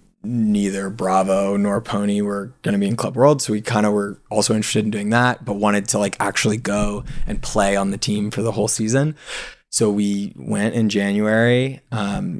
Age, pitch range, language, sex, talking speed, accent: 20-39, 100-115 Hz, English, male, 205 wpm, American